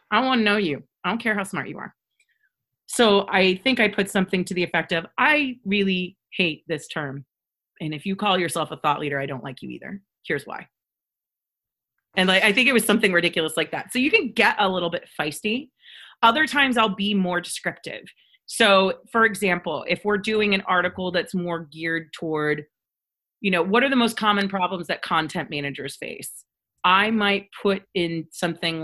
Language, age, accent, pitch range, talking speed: English, 30-49, American, 160-210 Hz, 195 wpm